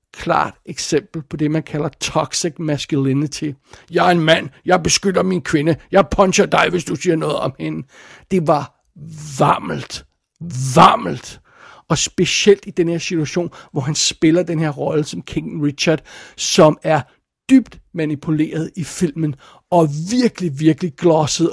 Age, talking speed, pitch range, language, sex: 60-79, 150 wpm, 150-175 Hz, Danish, male